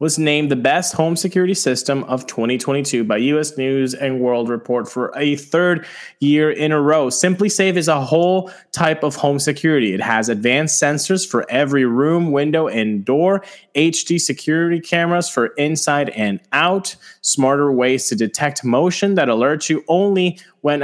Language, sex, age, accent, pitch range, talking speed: English, male, 20-39, American, 125-160 Hz, 165 wpm